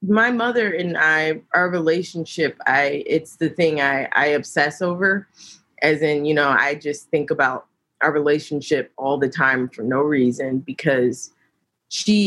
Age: 20-39